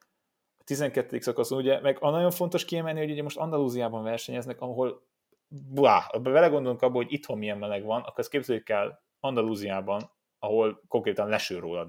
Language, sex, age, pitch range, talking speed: Hungarian, male, 30-49, 105-140 Hz, 140 wpm